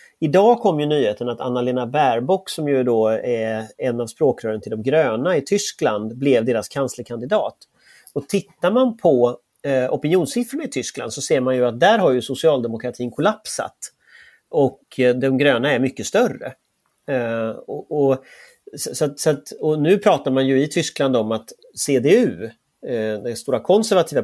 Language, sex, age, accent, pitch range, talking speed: Swedish, male, 30-49, native, 120-195 Hz, 150 wpm